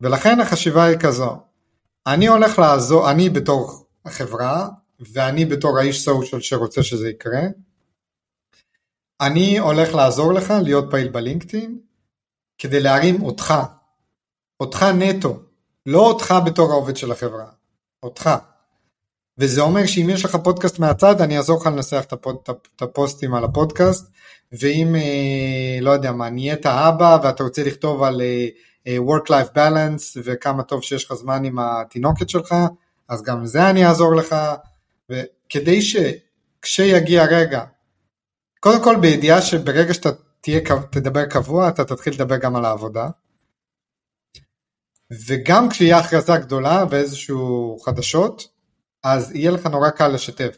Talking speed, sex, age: 125 wpm, male, 30-49